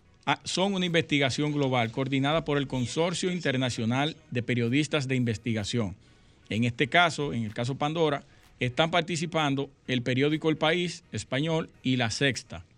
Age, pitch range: 50-69, 120-155 Hz